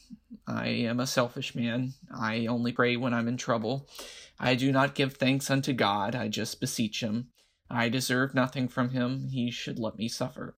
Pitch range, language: 115-140 Hz, English